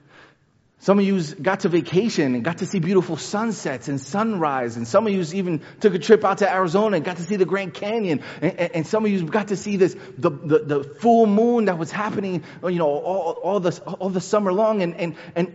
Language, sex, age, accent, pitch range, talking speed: English, male, 30-49, American, 140-195 Hz, 240 wpm